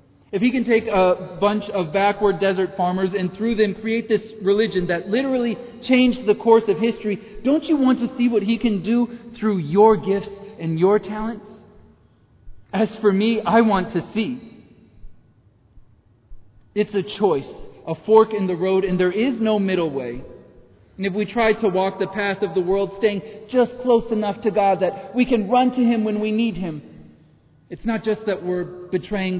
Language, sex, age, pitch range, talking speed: English, male, 40-59, 140-210 Hz, 190 wpm